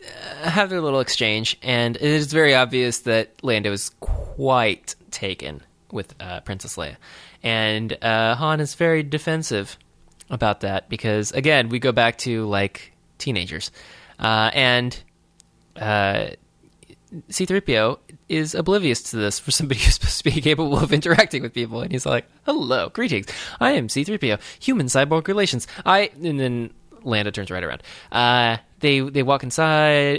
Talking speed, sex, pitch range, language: 155 wpm, male, 110-150 Hz, English